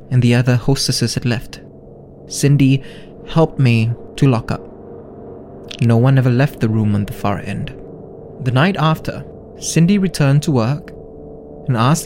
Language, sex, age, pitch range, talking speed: English, male, 20-39, 100-150 Hz, 155 wpm